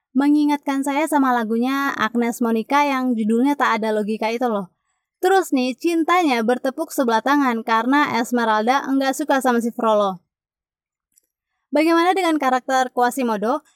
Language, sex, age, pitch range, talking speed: Indonesian, female, 20-39, 230-290 Hz, 130 wpm